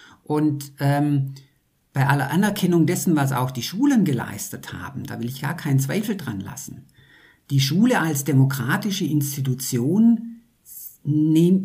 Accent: German